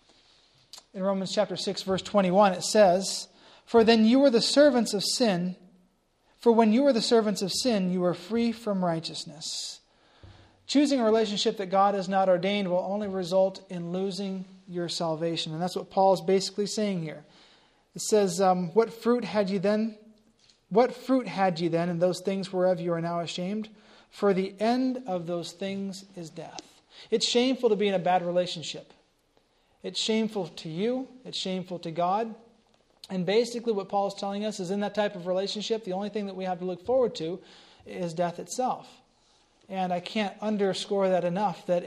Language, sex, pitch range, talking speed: English, male, 180-215 Hz, 185 wpm